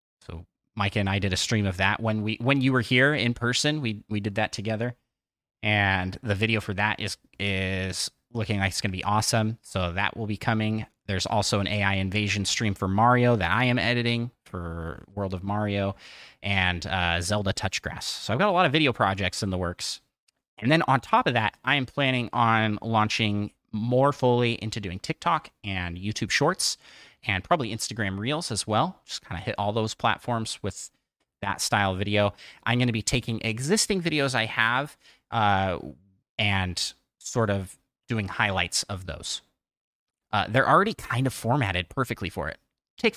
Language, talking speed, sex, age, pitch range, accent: English, 190 wpm, male, 30-49, 95-120 Hz, American